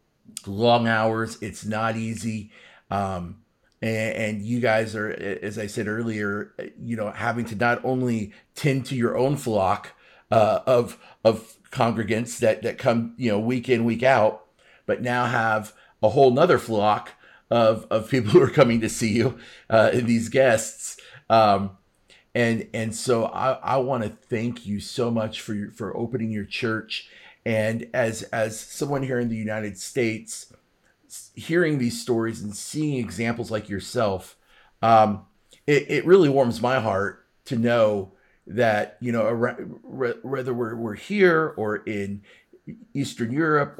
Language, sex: English, male